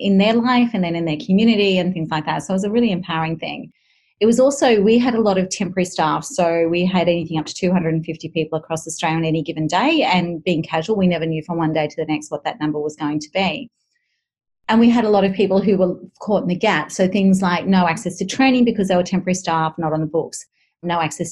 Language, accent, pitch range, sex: English, Australian, 160-195 Hz, female